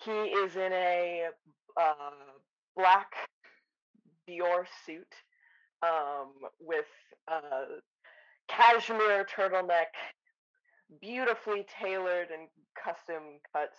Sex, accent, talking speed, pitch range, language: female, American, 85 wpm, 150-205 Hz, English